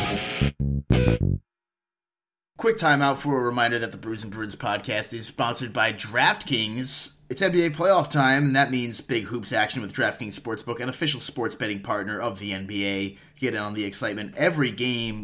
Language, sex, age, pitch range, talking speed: English, male, 30-49, 105-140 Hz, 165 wpm